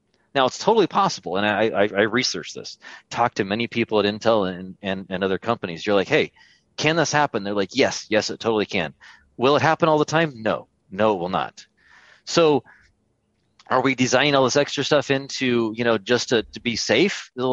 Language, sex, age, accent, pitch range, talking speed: English, male, 30-49, American, 110-145 Hz, 210 wpm